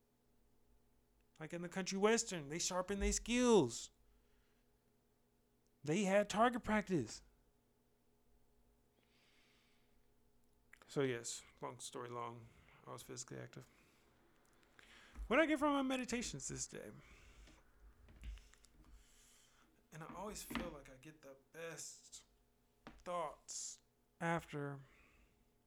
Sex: male